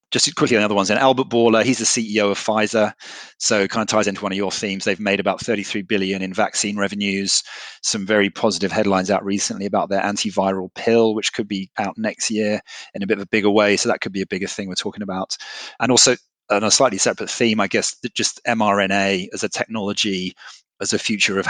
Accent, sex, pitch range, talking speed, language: British, male, 100-110 Hz, 230 wpm, English